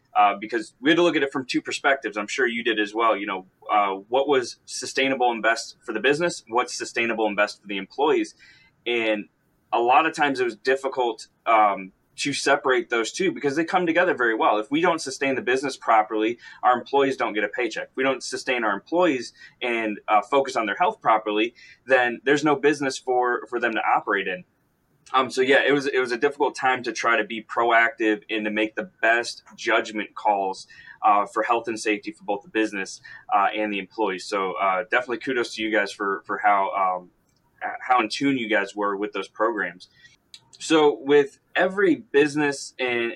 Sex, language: male, English